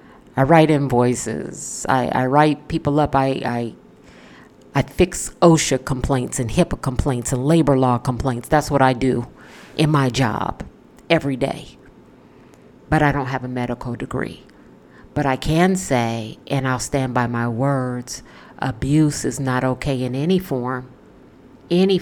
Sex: female